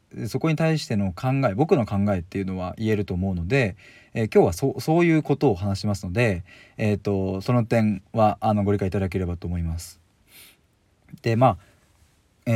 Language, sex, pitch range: Japanese, male, 95-135 Hz